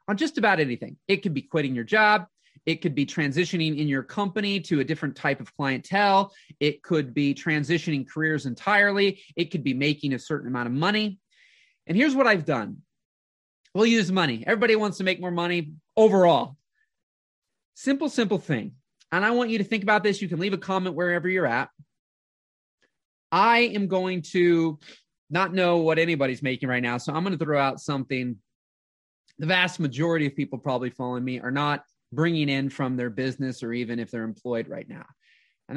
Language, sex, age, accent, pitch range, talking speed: English, male, 30-49, American, 135-195 Hz, 190 wpm